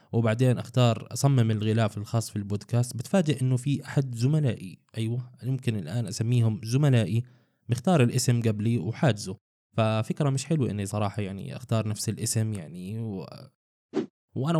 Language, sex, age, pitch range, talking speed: Arabic, male, 20-39, 110-130 Hz, 135 wpm